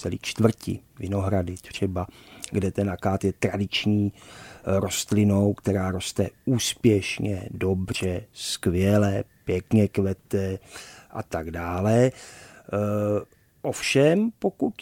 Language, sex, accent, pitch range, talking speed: Czech, male, native, 100-130 Hz, 95 wpm